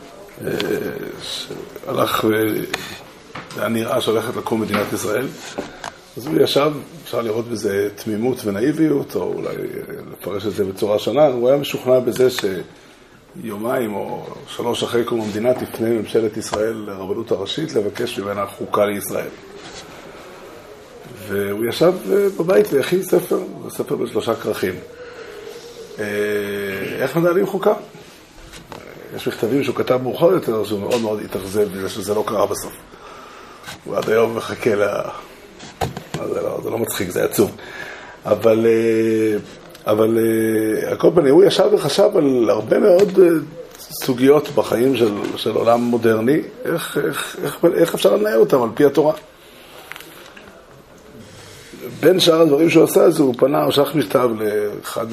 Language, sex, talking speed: Hebrew, male, 130 wpm